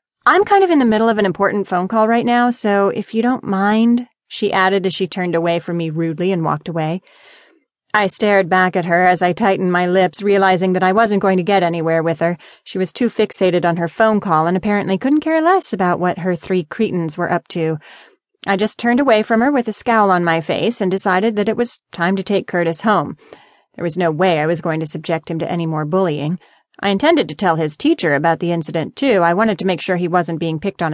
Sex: female